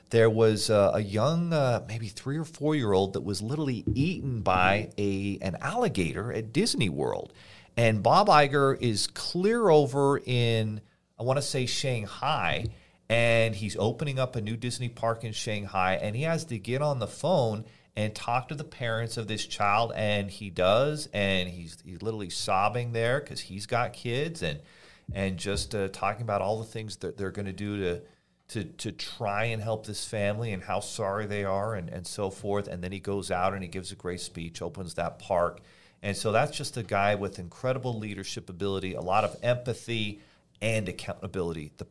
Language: English